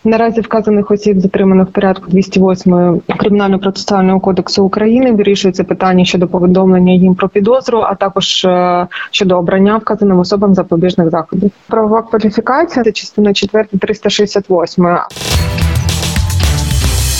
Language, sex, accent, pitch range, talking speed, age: Ukrainian, female, native, 180-210 Hz, 110 wpm, 20-39